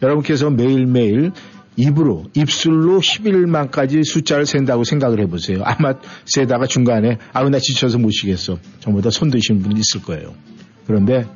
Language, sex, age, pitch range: Korean, male, 50-69, 110-145 Hz